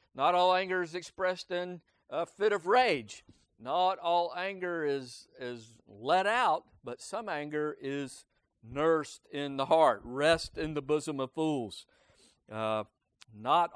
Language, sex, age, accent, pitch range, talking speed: English, male, 50-69, American, 110-150 Hz, 145 wpm